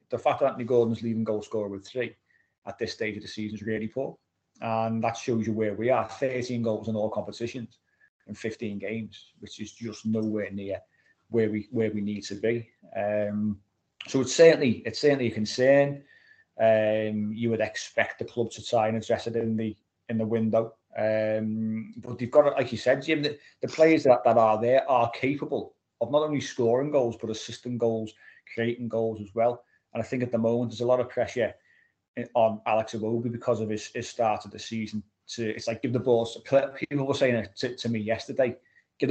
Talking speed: 210 wpm